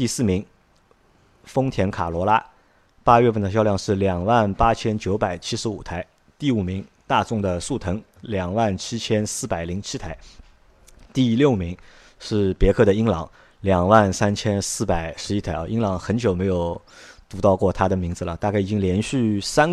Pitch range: 90-110 Hz